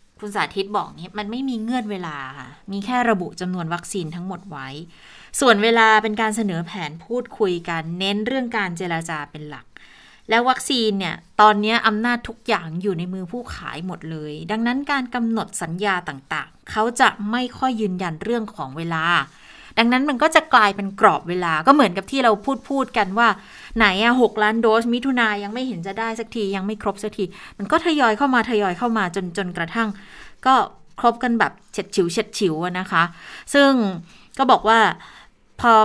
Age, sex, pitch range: 20-39, female, 180-230 Hz